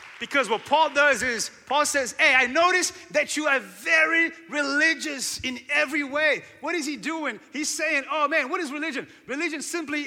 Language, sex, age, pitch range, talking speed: English, male, 30-49, 260-315 Hz, 185 wpm